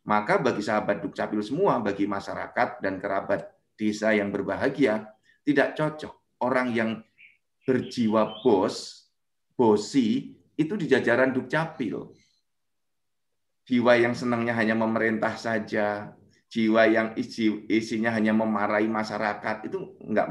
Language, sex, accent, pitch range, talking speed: Indonesian, male, native, 105-135 Hz, 110 wpm